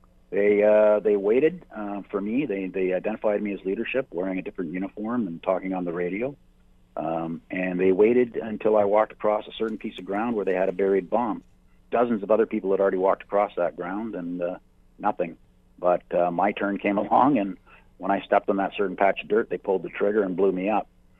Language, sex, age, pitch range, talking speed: English, male, 50-69, 90-100 Hz, 220 wpm